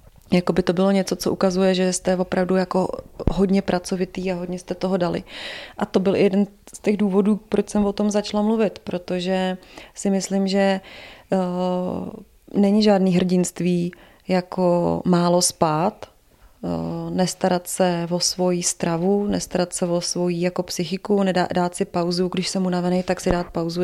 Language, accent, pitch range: Czech, native, 180-195 Hz